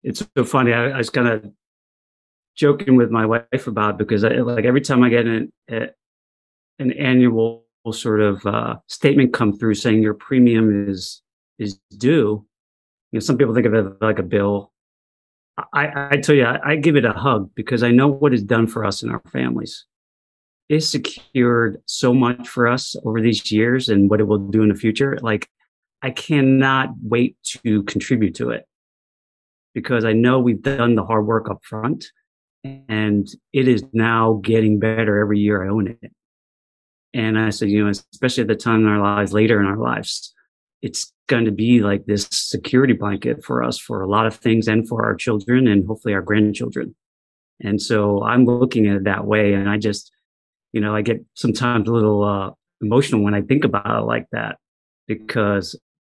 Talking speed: 195 wpm